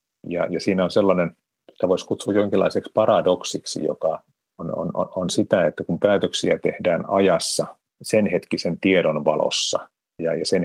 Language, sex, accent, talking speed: Finnish, male, native, 135 wpm